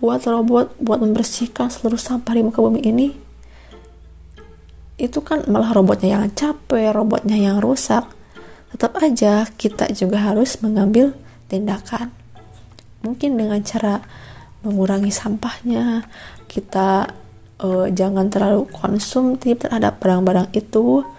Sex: female